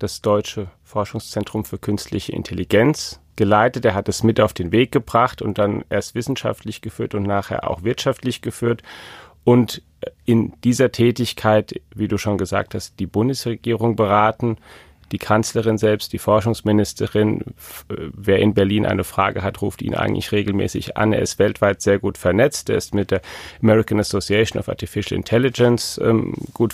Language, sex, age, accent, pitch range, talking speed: German, male, 40-59, German, 100-115 Hz, 155 wpm